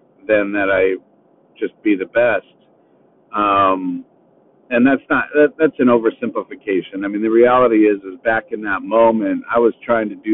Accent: American